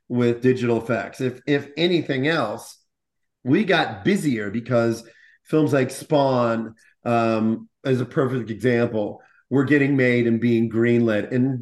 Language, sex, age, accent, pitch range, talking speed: English, male, 40-59, American, 120-155 Hz, 135 wpm